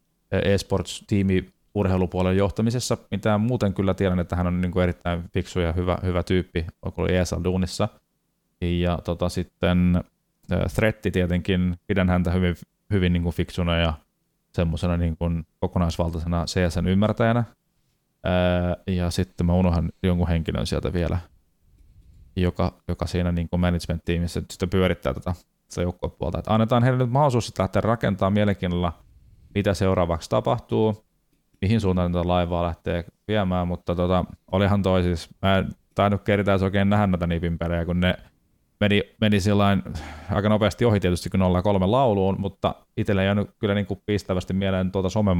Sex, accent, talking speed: male, native, 140 wpm